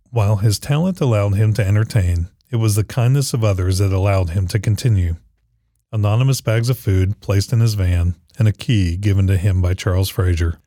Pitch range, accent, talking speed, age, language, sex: 95-115 Hz, American, 195 wpm, 40-59, English, male